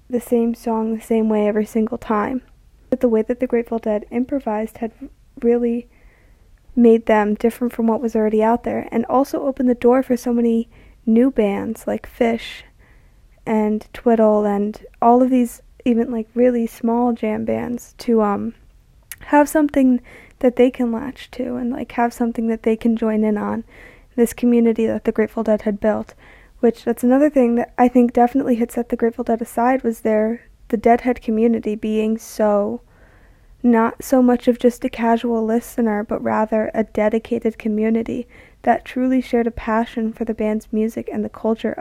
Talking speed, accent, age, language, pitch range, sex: 180 wpm, American, 20-39, English, 225-245 Hz, female